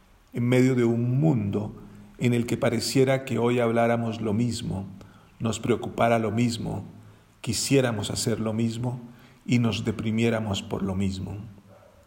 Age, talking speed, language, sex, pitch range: 40-59, 140 wpm, Spanish, male, 105-125 Hz